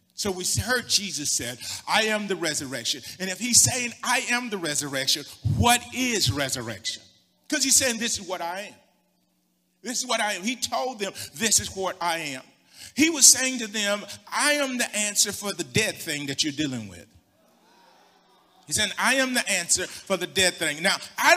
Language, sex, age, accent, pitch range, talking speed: English, male, 40-59, American, 145-235 Hz, 195 wpm